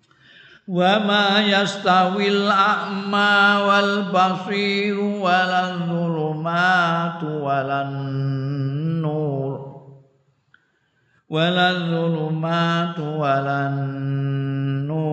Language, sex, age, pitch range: Indonesian, male, 50-69, 140-170 Hz